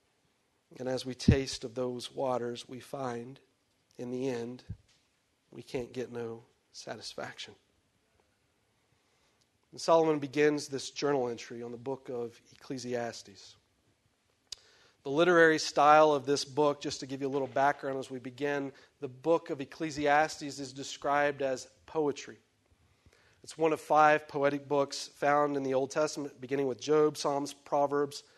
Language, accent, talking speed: English, American, 145 wpm